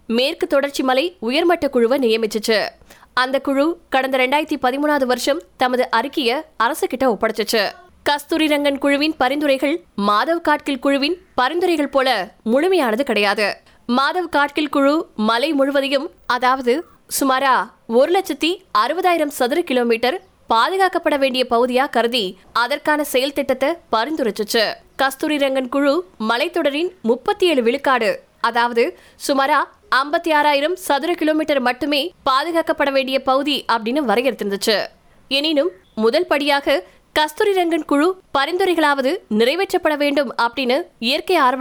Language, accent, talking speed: Tamil, native, 55 wpm